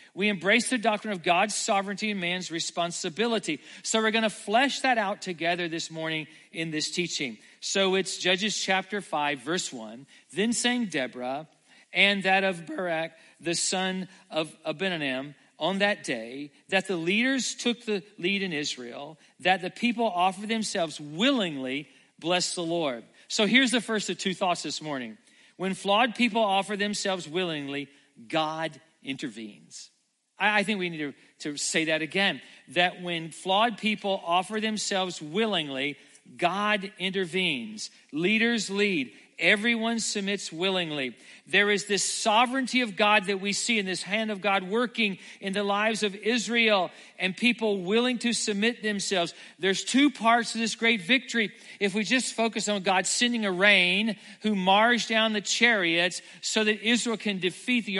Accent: American